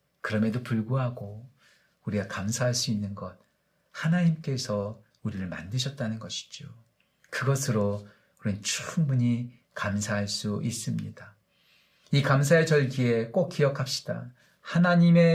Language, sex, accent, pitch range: Korean, male, native, 125-180 Hz